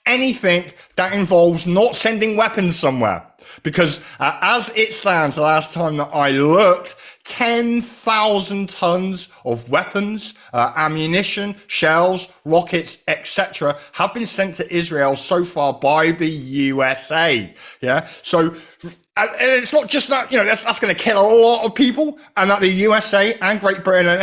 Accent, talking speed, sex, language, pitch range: British, 155 wpm, male, English, 155-200 Hz